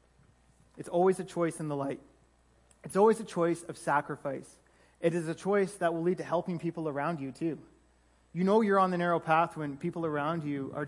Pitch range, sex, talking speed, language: 140-170 Hz, male, 210 wpm, English